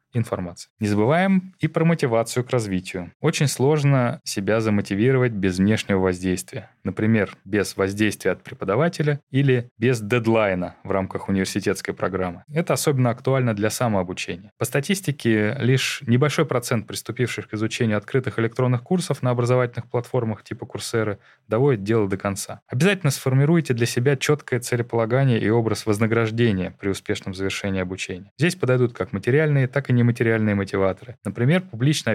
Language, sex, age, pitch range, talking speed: Russian, male, 20-39, 105-140 Hz, 140 wpm